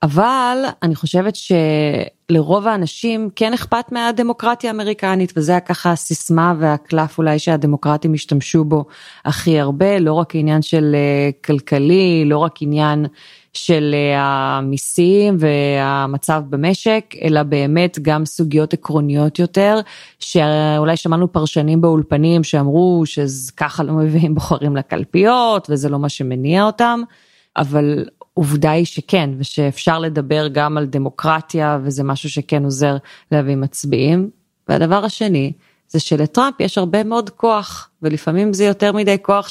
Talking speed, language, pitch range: 125 wpm, Hebrew, 150-190 Hz